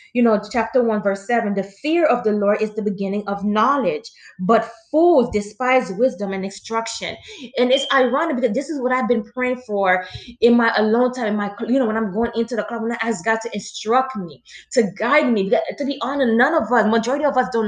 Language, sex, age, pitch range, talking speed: English, female, 20-39, 205-260 Hz, 225 wpm